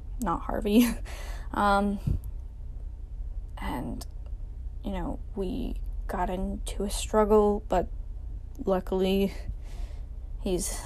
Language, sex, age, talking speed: English, female, 10-29, 75 wpm